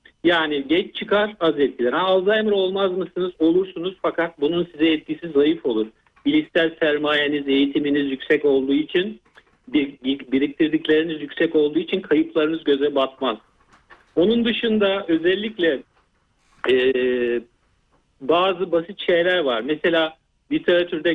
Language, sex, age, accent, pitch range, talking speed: Turkish, male, 50-69, native, 140-180 Hz, 115 wpm